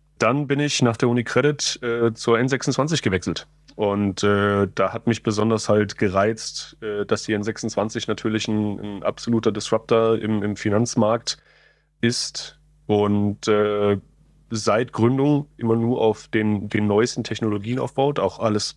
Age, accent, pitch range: 30-49, German, 105-120 Hz